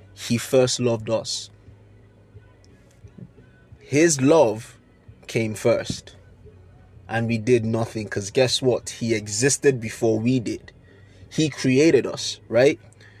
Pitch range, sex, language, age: 105-135 Hz, male, English, 20-39